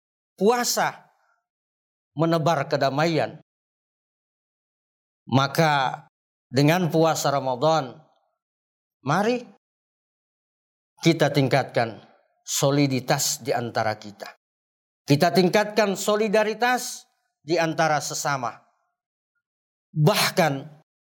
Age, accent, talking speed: 40-59, native, 60 wpm